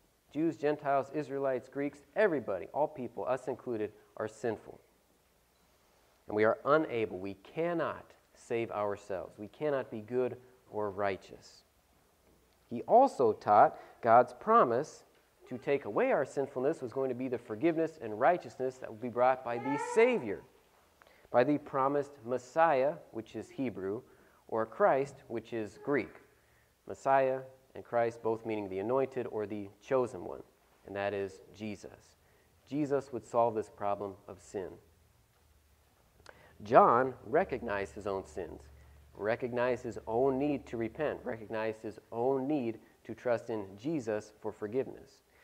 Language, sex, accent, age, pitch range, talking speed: English, male, American, 30-49, 105-135 Hz, 140 wpm